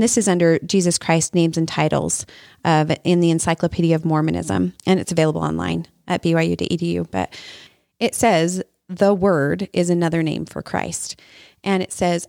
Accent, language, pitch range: American, English, 165-205 Hz